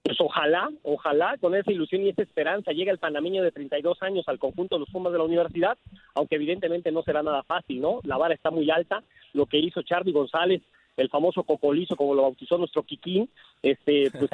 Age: 50-69